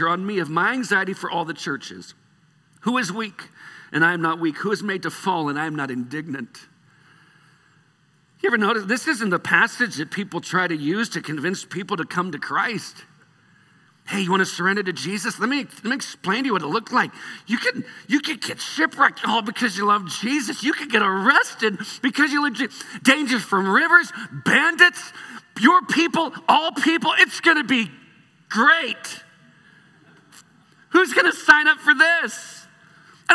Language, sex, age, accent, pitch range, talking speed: English, male, 50-69, American, 165-260 Hz, 185 wpm